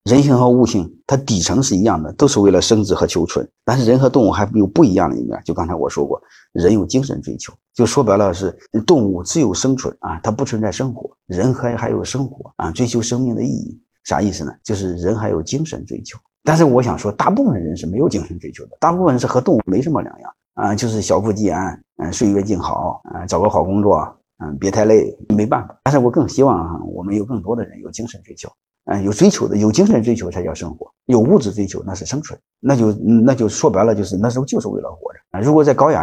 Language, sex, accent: Chinese, male, native